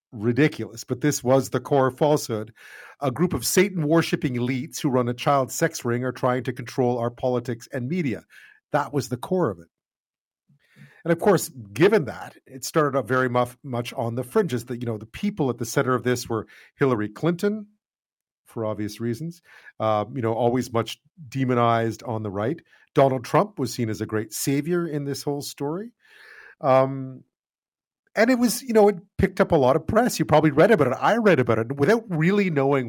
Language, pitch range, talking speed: English, 115-160 Hz, 200 wpm